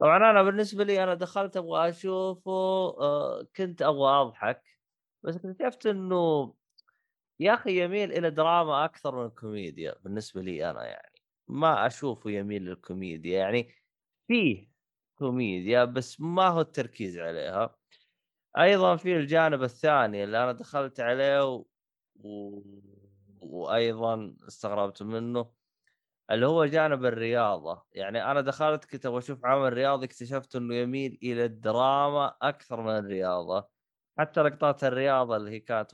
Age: 20-39